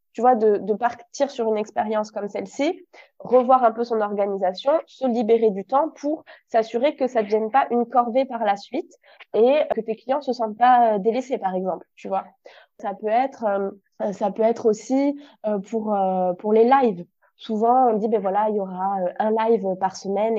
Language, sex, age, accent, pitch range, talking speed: French, female, 20-39, French, 210-250 Hz, 195 wpm